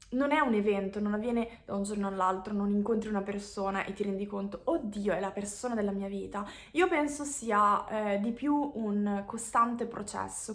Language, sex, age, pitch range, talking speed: Italian, female, 20-39, 205-255 Hz, 195 wpm